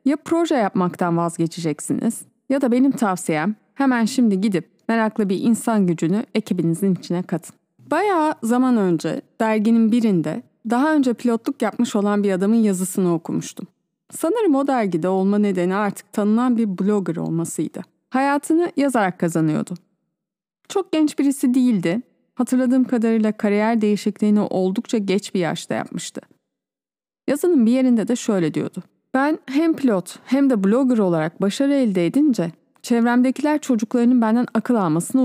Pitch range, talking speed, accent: 185-260 Hz, 135 wpm, native